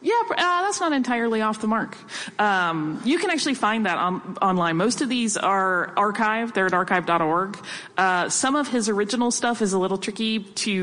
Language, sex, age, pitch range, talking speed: English, female, 30-49, 180-235 Hz, 195 wpm